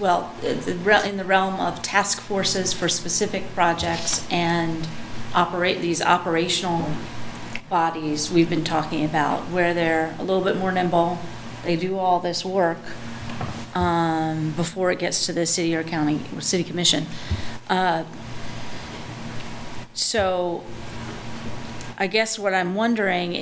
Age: 40-59